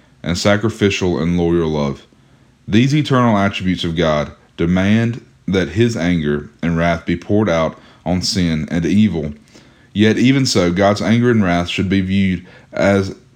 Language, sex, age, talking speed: English, male, 30-49, 155 wpm